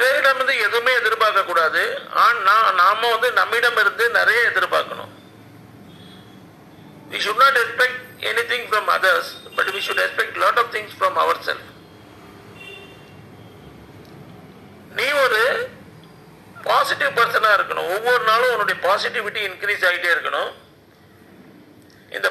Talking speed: 40 wpm